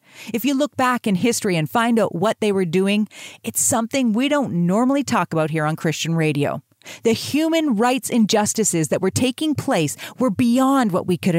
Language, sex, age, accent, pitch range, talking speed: English, female, 40-59, American, 175-245 Hz, 195 wpm